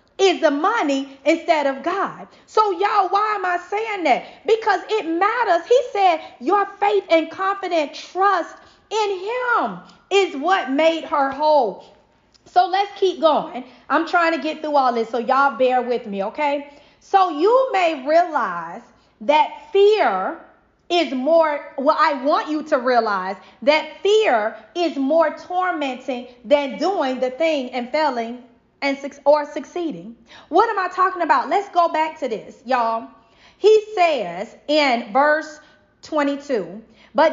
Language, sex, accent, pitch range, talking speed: English, female, American, 275-355 Hz, 150 wpm